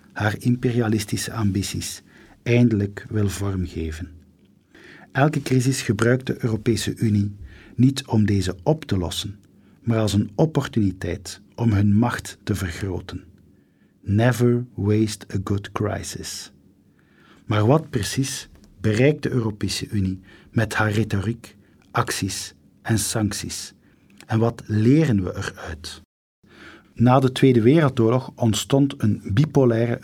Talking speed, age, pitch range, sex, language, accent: 115 wpm, 50-69, 100-120 Hz, male, Dutch, Dutch